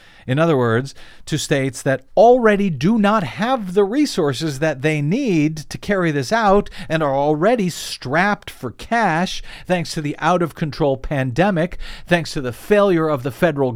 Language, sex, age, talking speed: English, male, 50-69, 170 wpm